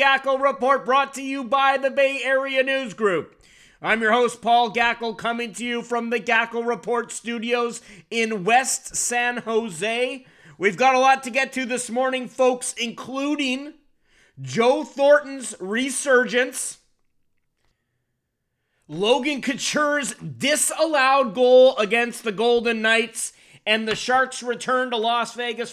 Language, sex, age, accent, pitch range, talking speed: English, male, 30-49, American, 225-265 Hz, 135 wpm